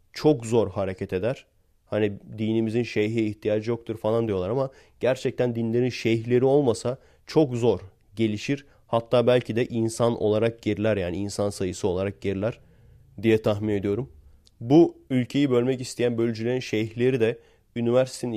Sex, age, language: male, 30-49, Turkish